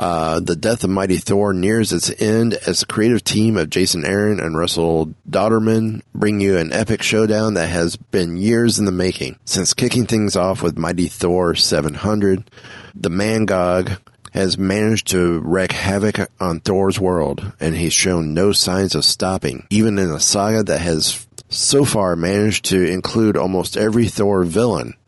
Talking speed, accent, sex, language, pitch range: 170 wpm, American, male, English, 85-110 Hz